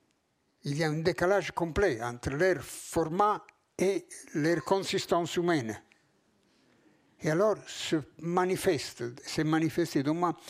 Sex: male